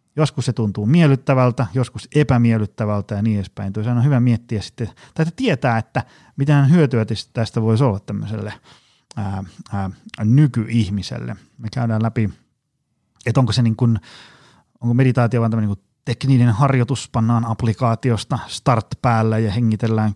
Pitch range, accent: 105-130 Hz, native